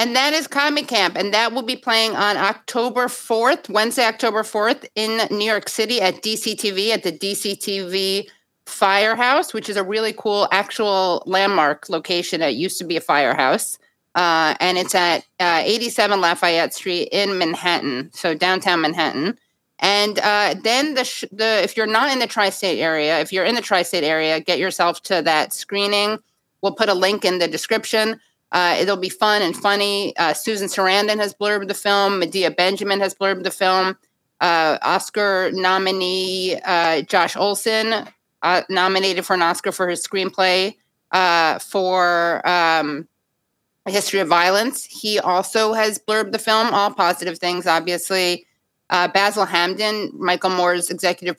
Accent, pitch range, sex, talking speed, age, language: American, 175-210 Hz, female, 165 wpm, 30-49, English